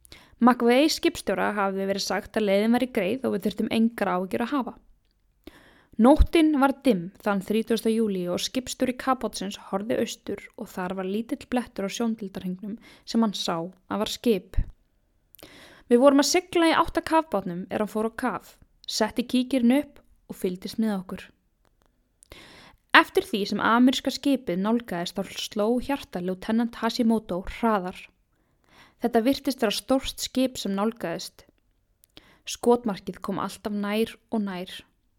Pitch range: 195-250 Hz